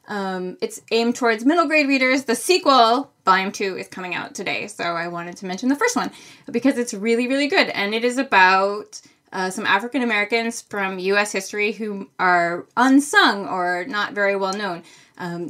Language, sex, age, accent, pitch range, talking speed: English, female, 10-29, American, 185-240 Hz, 185 wpm